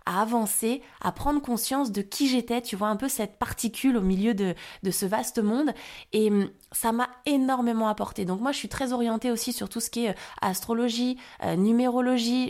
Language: French